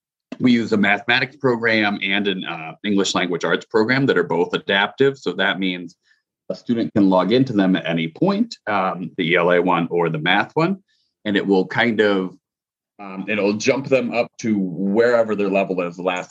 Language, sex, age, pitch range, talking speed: English, male, 30-49, 90-115 Hz, 195 wpm